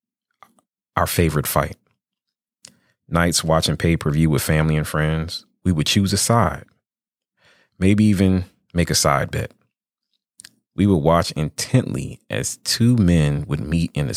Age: 30-49